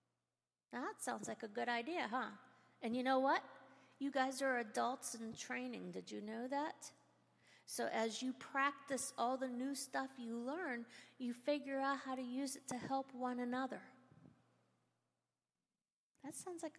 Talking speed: 160 wpm